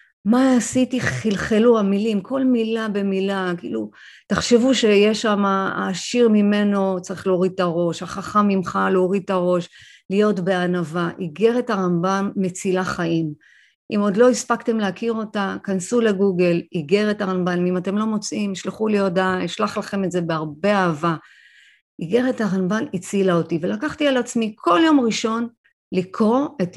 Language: Hebrew